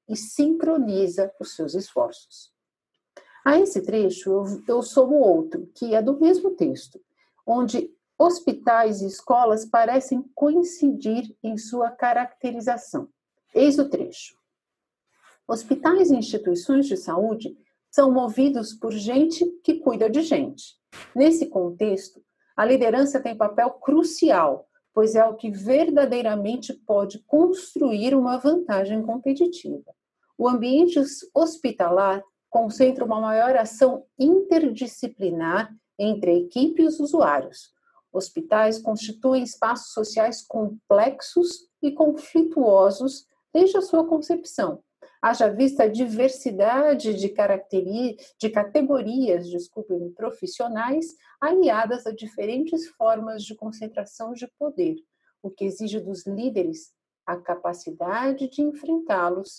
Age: 50-69